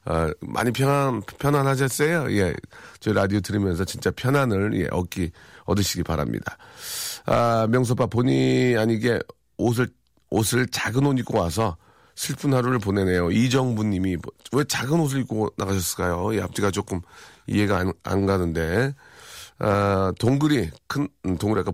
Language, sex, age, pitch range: Korean, male, 40-59, 100-145 Hz